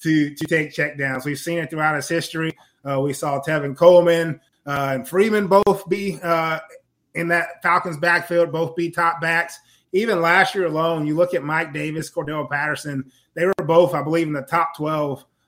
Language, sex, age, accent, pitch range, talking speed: English, male, 20-39, American, 150-175 Hz, 190 wpm